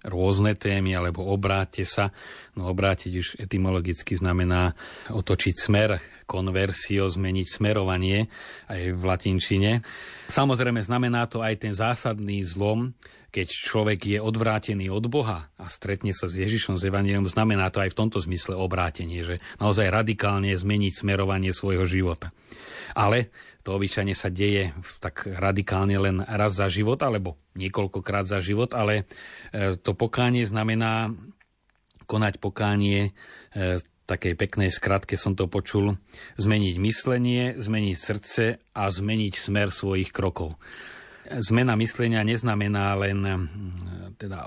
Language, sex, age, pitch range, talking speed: Slovak, male, 40-59, 95-110 Hz, 125 wpm